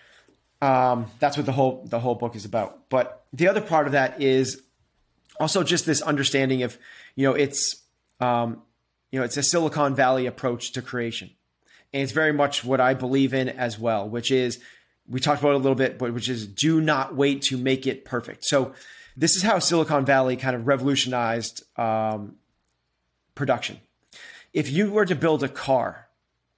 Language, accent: English, American